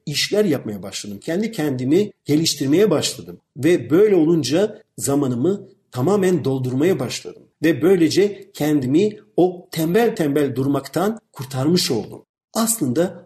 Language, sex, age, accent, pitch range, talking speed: Turkish, male, 50-69, native, 140-205 Hz, 110 wpm